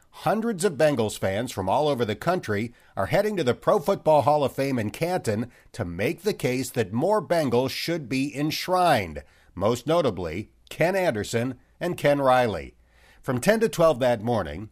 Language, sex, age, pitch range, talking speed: English, male, 50-69, 105-155 Hz, 175 wpm